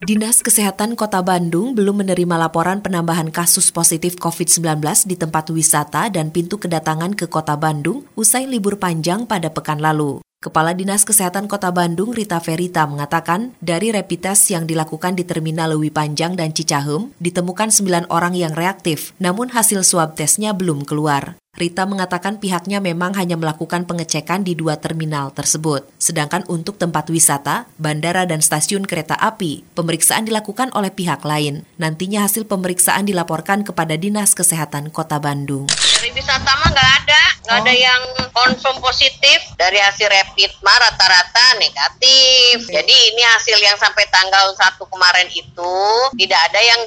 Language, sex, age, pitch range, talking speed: Indonesian, female, 20-39, 165-205 Hz, 150 wpm